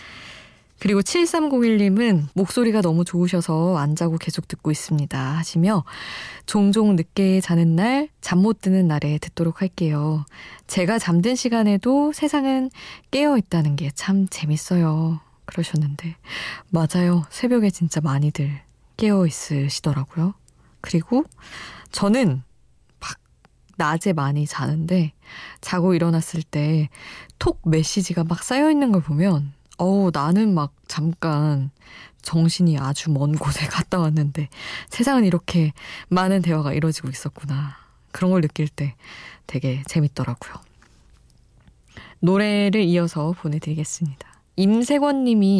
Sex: female